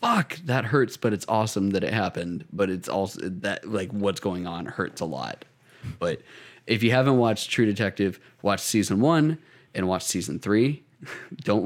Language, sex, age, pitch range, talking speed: English, male, 20-39, 95-115 Hz, 180 wpm